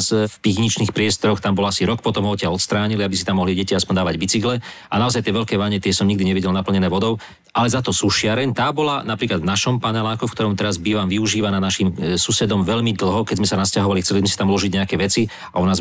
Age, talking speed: 40-59, 230 wpm